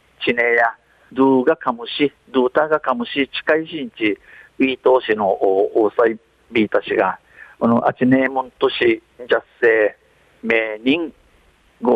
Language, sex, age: Japanese, male, 50-69